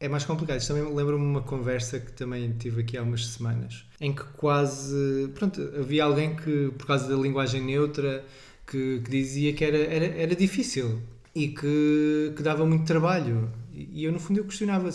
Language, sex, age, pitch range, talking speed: Portuguese, male, 20-39, 125-160 Hz, 190 wpm